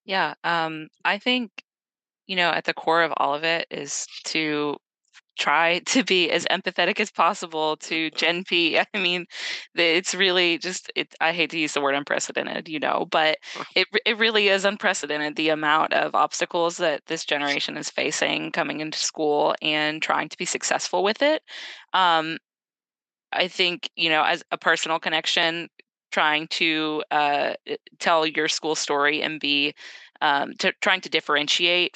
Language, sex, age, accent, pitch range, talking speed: English, female, 20-39, American, 155-180 Hz, 165 wpm